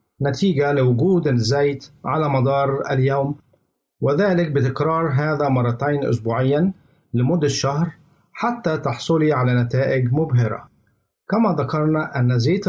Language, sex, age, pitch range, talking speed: Arabic, male, 50-69, 130-160 Hz, 105 wpm